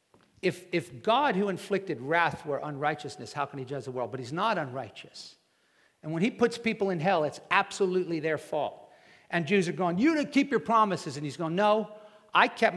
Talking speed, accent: 205 wpm, American